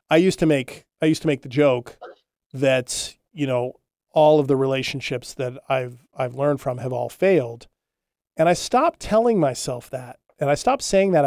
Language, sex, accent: English, male, American